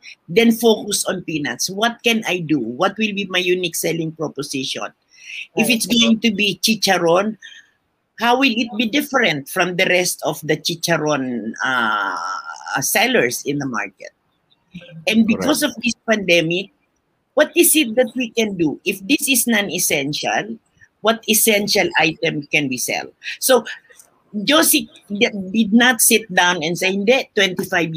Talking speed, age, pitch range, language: 145 wpm, 50-69, 165-235 Hz, English